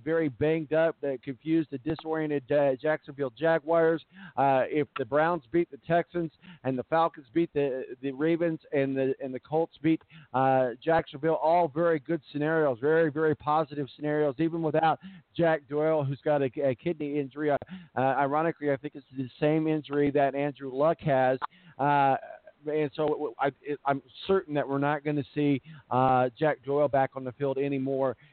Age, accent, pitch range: 50-69, American, 140-165 Hz